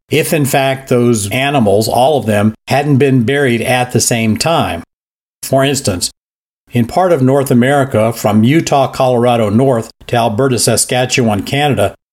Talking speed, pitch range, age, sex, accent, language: 150 wpm, 110-135 Hz, 50-69, male, American, English